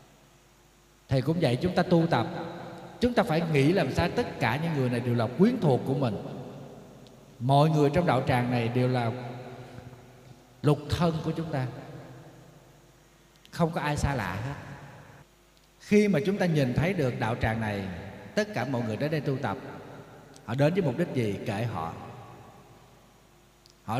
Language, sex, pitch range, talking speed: Vietnamese, male, 120-160 Hz, 175 wpm